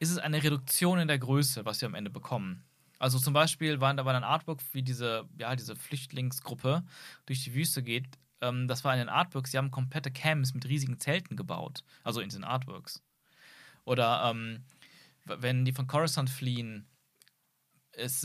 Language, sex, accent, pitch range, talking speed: German, male, German, 120-145 Hz, 185 wpm